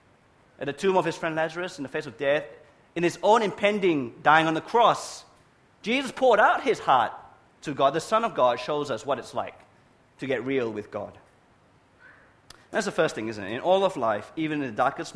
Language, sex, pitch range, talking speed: English, male, 145-215 Hz, 220 wpm